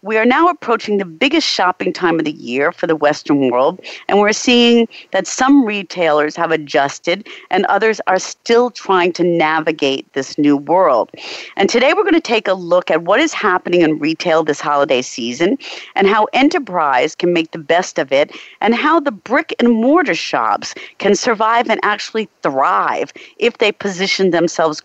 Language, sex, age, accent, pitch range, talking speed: English, female, 50-69, American, 160-215 Hz, 180 wpm